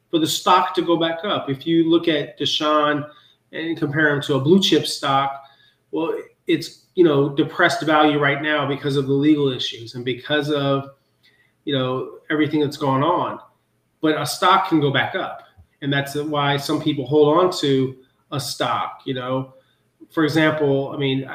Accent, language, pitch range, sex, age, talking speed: American, English, 135-155 Hz, male, 30-49, 185 wpm